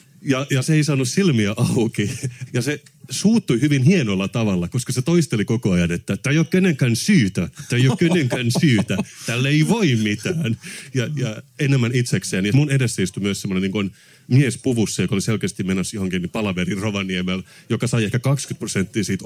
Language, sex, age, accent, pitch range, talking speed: Finnish, male, 30-49, native, 100-135 Hz, 185 wpm